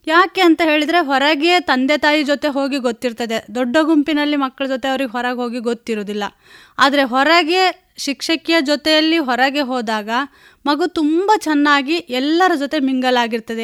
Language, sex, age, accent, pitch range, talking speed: Kannada, female, 20-39, native, 250-310 Hz, 130 wpm